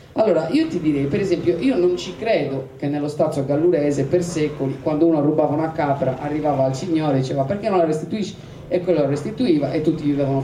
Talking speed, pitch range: 215 wpm, 140-165 Hz